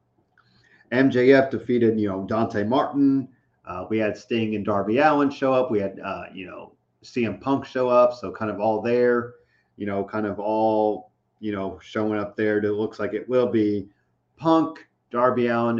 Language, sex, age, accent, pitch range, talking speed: English, male, 40-59, American, 105-120 Hz, 180 wpm